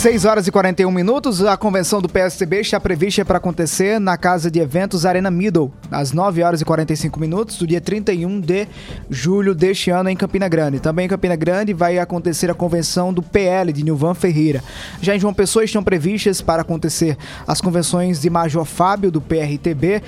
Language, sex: Portuguese, male